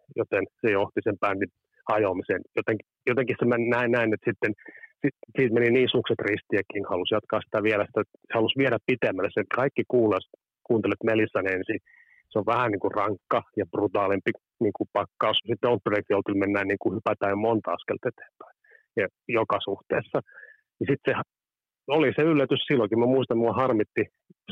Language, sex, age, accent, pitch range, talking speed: Finnish, male, 30-49, native, 105-130 Hz, 170 wpm